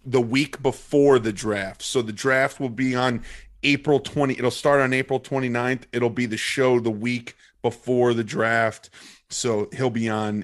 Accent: American